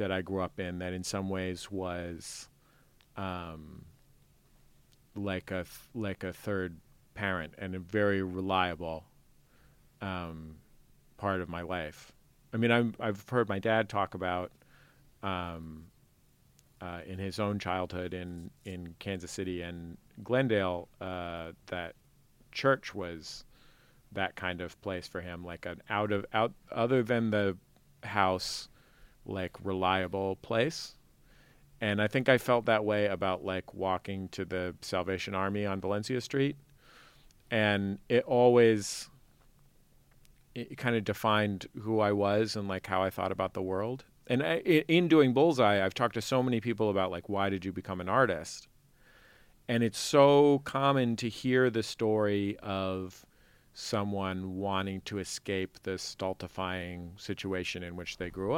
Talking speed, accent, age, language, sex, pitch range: 145 wpm, American, 40-59, English, male, 90-110 Hz